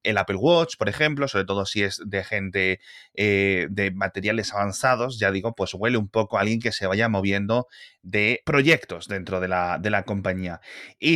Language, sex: Spanish, male